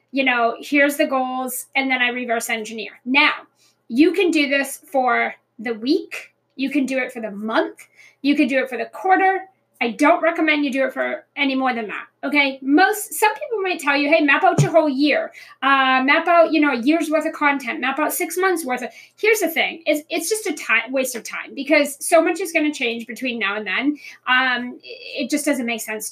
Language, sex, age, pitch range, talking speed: English, female, 30-49, 245-320 Hz, 225 wpm